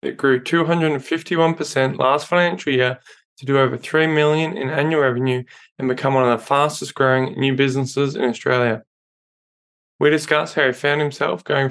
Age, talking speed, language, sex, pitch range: 20-39, 160 wpm, English, male, 130-150 Hz